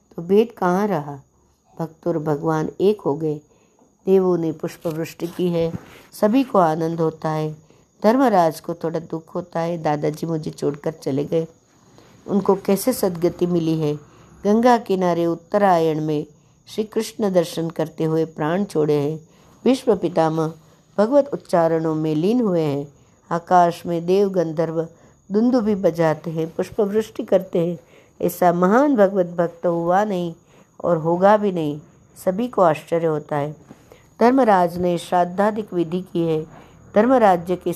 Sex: female